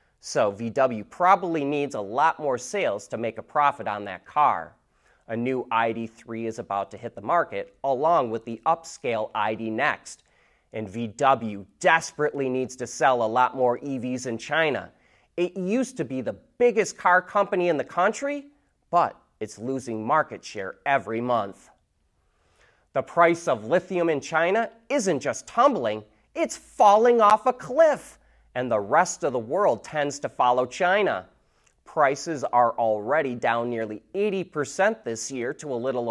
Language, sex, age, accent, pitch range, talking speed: English, male, 30-49, American, 115-190 Hz, 160 wpm